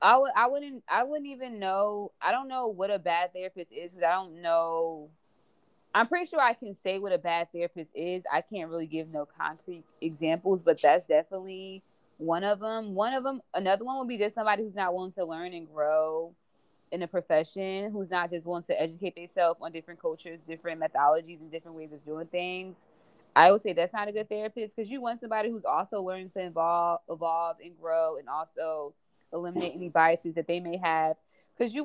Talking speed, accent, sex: 210 wpm, American, female